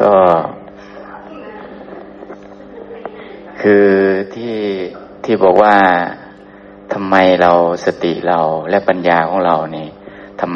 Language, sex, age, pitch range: Thai, male, 60-79, 100-110 Hz